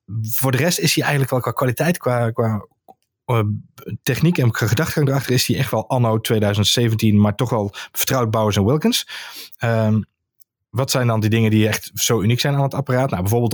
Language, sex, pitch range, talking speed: Dutch, male, 105-135 Hz, 195 wpm